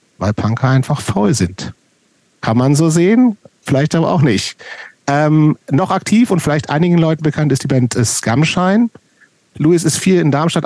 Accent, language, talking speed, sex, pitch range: German, German, 170 wpm, male, 110-150 Hz